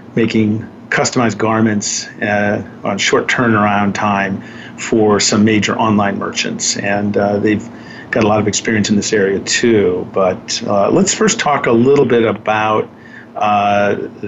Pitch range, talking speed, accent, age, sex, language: 105-115 Hz, 145 wpm, American, 50-69, male, English